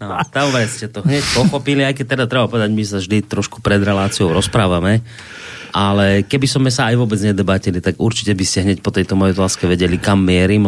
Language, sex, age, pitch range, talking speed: Slovak, male, 30-49, 95-130 Hz, 210 wpm